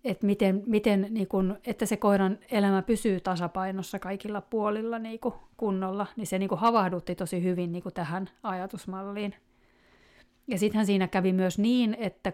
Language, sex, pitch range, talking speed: Finnish, female, 185-215 Hz, 145 wpm